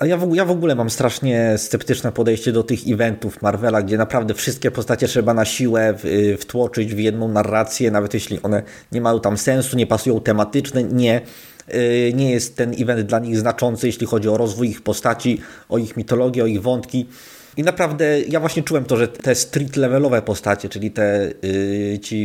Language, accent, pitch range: Polish, native, 105-125 Hz